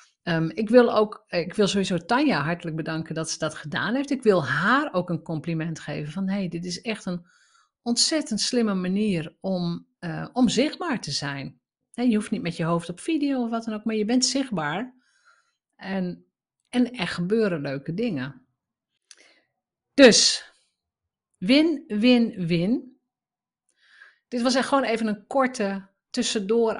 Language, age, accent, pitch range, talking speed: Dutch, 50-69, Dutch, 165-225 Hz, 155 wpm